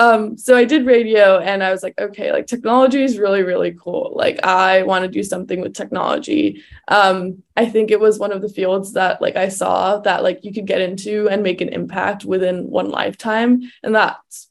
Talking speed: 215 wpm